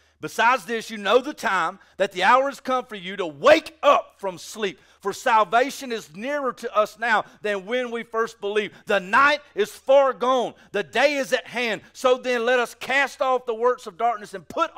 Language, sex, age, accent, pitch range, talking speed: English, male, 40-59, American, 200-255 Hz, 210 wpm